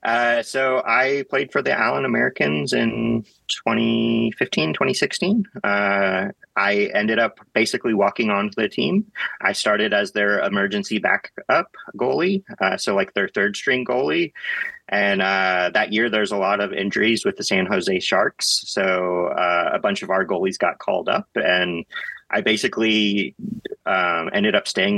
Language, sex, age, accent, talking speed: English, male, 30-49, American, 155 wpm